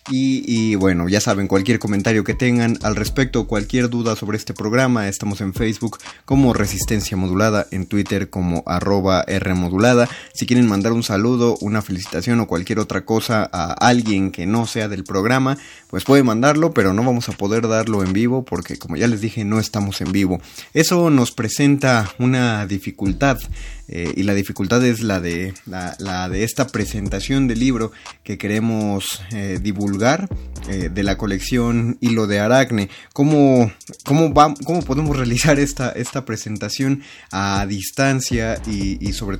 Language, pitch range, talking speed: Spanish, 100-125 Hz, 160 wpm